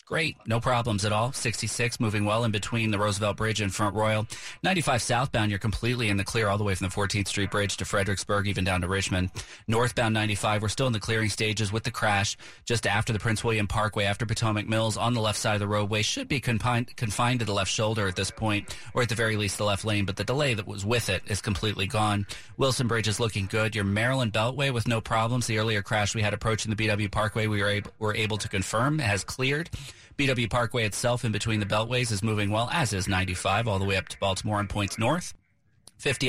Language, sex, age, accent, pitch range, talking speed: English, male, 30-49, American, 105-120 Hz, 240 wpm